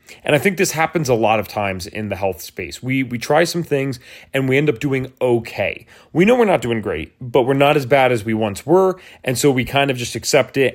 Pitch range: 110-140 Hz